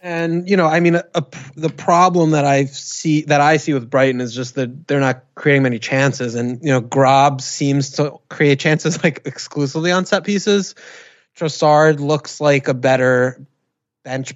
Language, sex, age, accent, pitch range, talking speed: English, male, 20-39, American, 130-150 Hz, 175 wpm